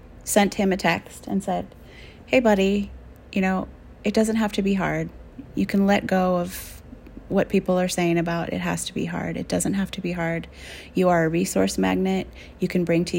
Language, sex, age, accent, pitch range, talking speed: English, female, 30-49, American, 175-215 Hz, 210 wpm